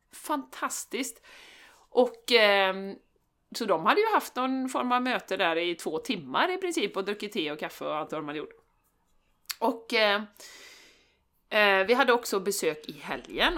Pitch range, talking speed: 200-300 Hz, 165 wpm